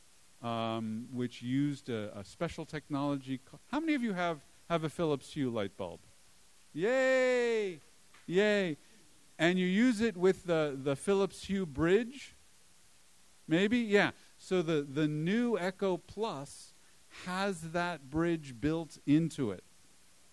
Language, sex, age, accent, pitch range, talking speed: English, male, 50-69, American, 120-170 Hz, 135 wpm